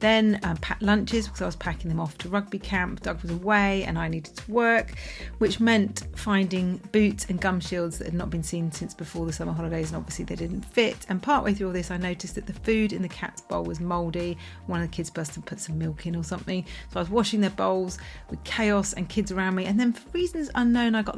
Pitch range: 170-205 Hz